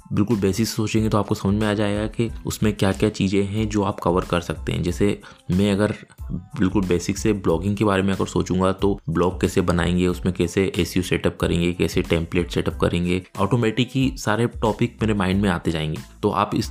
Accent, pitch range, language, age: native, 90-105 Hz, Hindi, 20-39